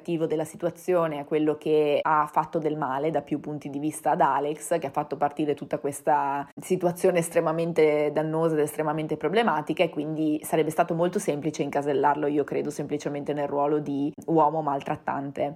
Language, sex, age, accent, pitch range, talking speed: Italian, female, 20-39, native, 145-170 Hz, 165 wpm